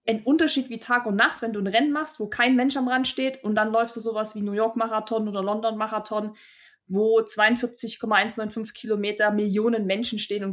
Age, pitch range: 20-39, 205-240 Hz